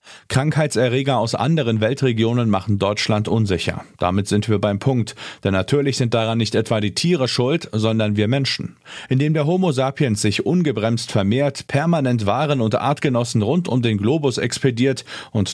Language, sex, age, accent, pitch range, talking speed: German, male, 40-59, German, 105-135 Hz, 160 wpm